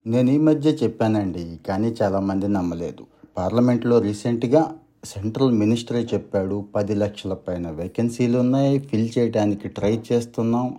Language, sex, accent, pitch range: Telugu, male, native, 100-125 Hz